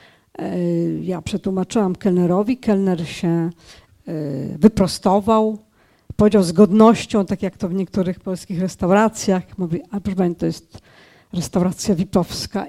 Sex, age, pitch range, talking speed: female, 50-69, 175-225 Hz, 110 wpm